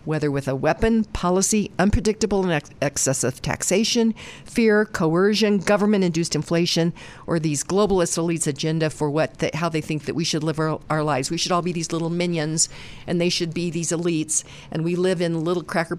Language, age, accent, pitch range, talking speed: English, 50-69, American, 150-185 Hz, 190 wpm